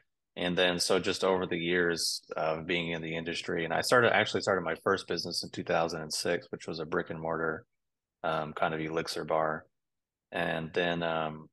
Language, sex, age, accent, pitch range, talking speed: English, male, 20-39, American, 80-90 Hz, 185 wpm